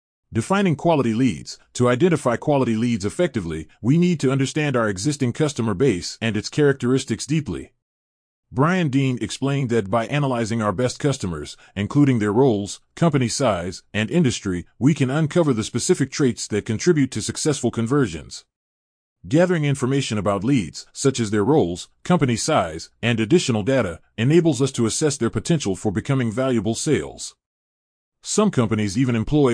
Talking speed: 150 wpm